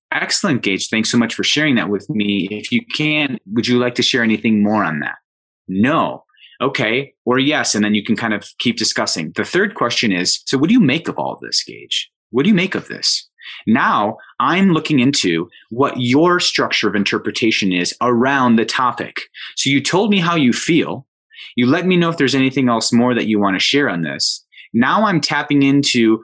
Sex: male